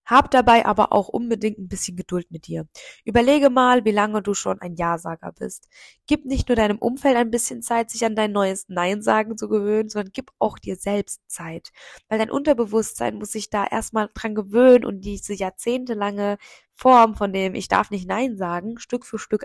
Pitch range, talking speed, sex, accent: 195-240 Hz, 195 wpm, female, German